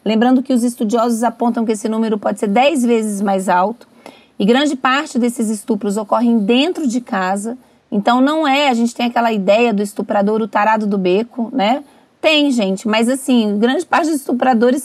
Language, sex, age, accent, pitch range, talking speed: Portuguese, female, 30-49, Brazilian, 220-270 Hz, 185 wpm